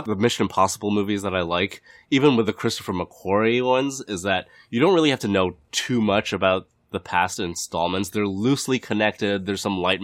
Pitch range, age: 90-110 Hz, 20-39